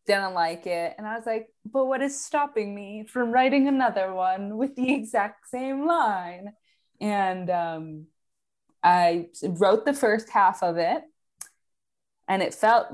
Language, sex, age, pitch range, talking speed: English, female, 20-39, 175-235 Hz, 155 wpm